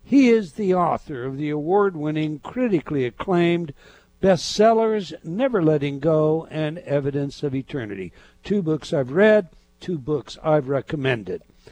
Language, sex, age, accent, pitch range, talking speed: English, male, 60-79, American, 150-200 Hz, 130 wpm